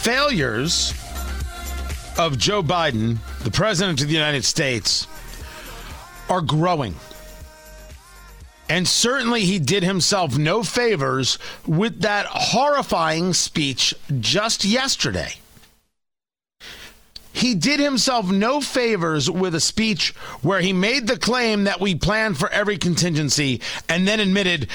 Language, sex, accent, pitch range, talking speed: English, male, American, 140-210 Hz, 115 wpm